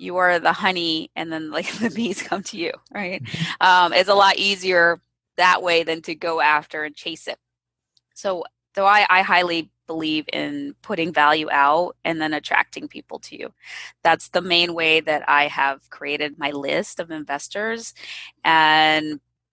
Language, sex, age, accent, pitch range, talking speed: English, female, 20-39, American, 155-185 Hz, 175 wpm